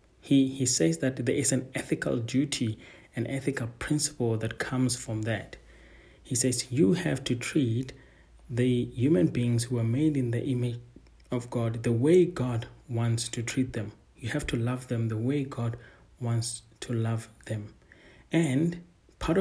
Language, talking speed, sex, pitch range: English, 165 wpm, male, 115-135 Hz